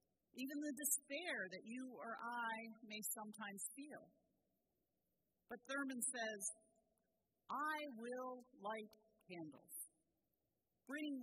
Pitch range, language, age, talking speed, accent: 210-270 Hz, English, 50-69, 95 wpm, American